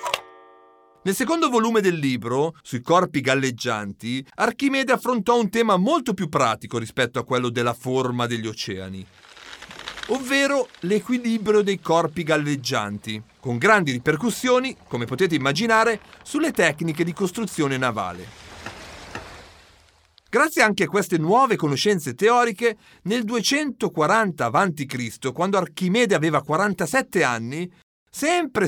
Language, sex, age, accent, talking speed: Italian, male, 40-59, native, 115 wpm